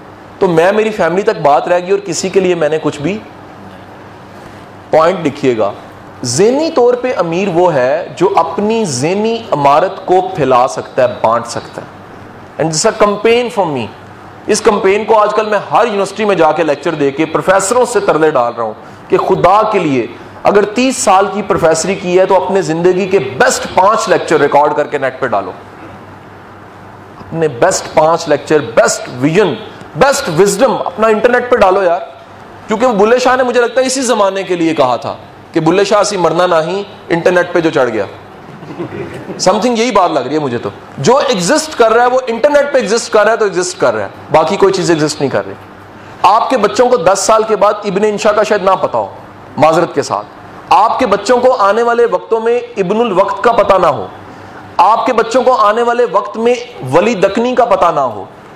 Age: 40-59